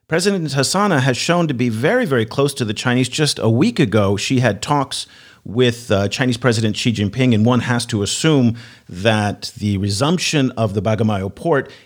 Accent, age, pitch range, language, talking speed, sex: American, 50-69, 110-145 Hz, English, 185 wpm, male